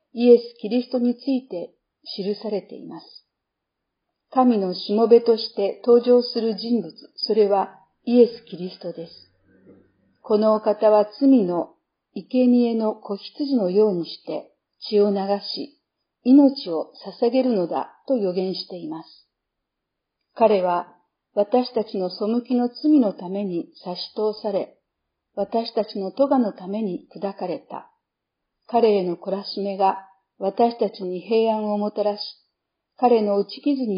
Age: 50-69